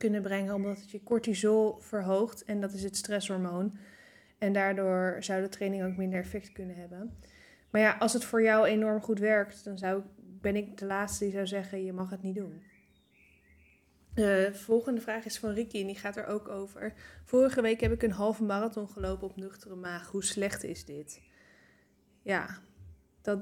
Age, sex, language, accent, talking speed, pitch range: 20-39, female, Dutch, Dutch, 190 wpm, 185-205 Hz